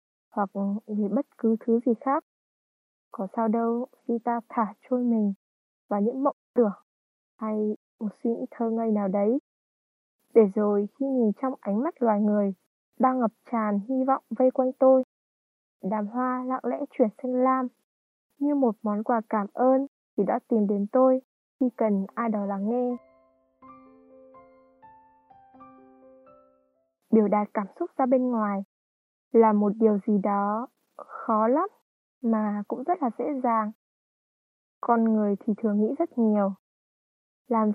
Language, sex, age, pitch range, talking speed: Vietnamese, female, 20-39, 210-260 Hz, 155 wpm